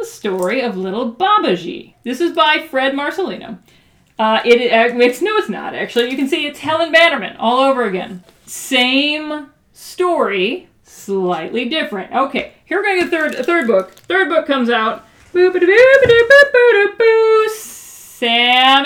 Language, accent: English, American